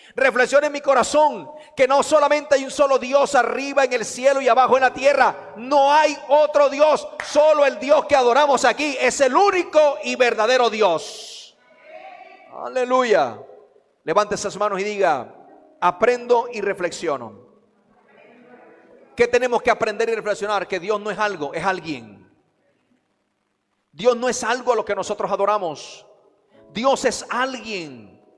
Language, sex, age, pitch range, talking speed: Spanish, male, 40-59, 215-285 Hz, 150 wpm